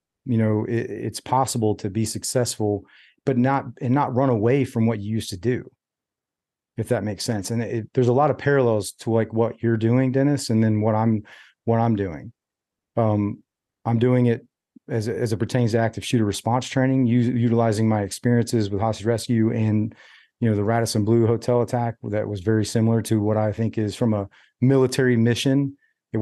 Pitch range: 110-125 Hz